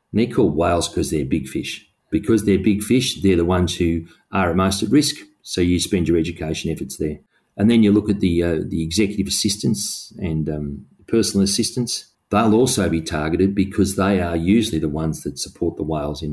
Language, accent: English, Australian